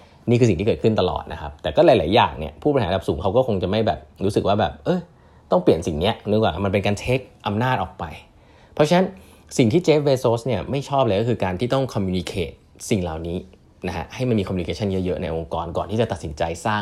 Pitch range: 90-115 Hz